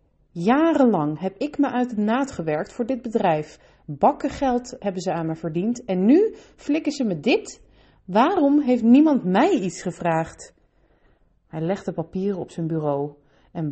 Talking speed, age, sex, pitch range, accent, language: 165 wpm, 30-49, female, 160-215 Hz, Dutch, Dutch